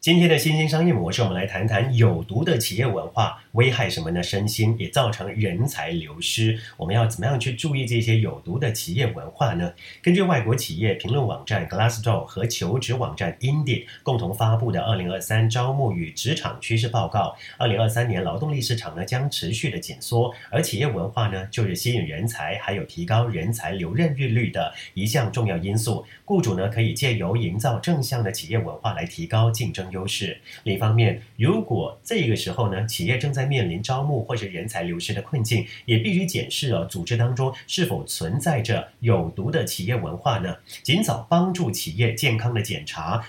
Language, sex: English, male